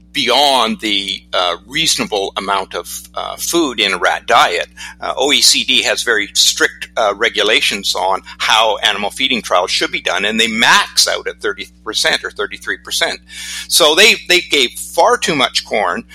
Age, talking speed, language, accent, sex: 50-69, 160 wpm, English, American, male